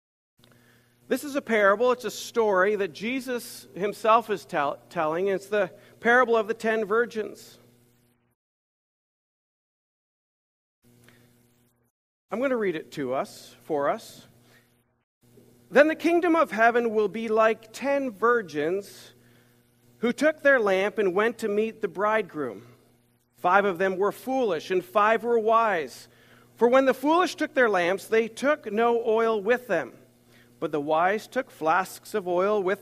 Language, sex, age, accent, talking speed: English, male, 40-59, American, 145 wpm